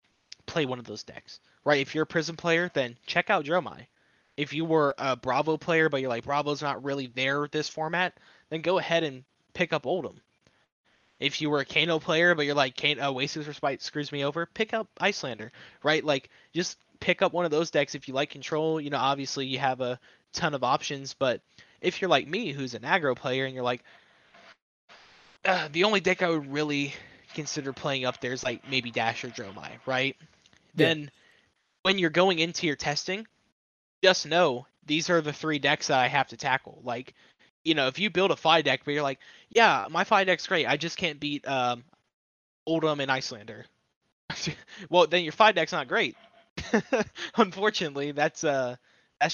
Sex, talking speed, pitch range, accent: male, 195 wpm, 135-165 Hz, American